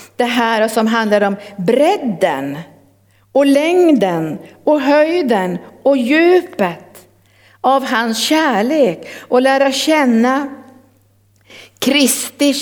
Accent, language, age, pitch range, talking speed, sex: native, Swedish, 50-69, 185-250 Hz, 90 wpm, female